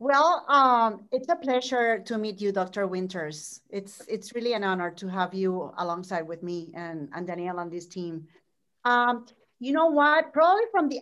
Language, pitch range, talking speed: English, 205-275 Hz, 185 wpm